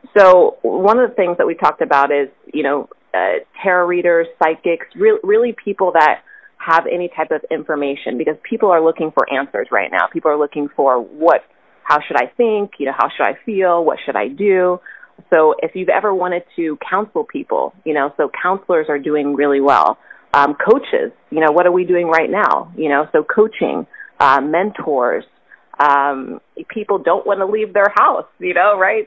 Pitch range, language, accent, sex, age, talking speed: 150-215 Hz, English, American, female, 30-49, 195 wpm